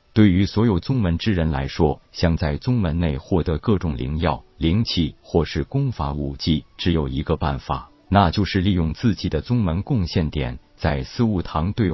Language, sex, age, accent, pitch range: Chinese, male, 50-69, native, 75-100 Hz